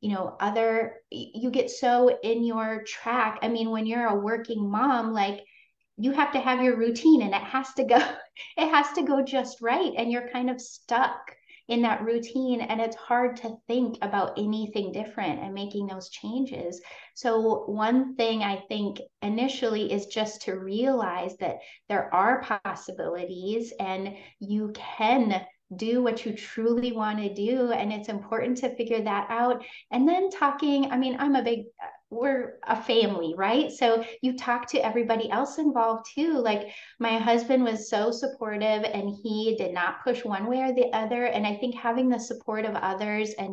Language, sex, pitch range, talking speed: English, female, 210-250 Hz, 180 wpm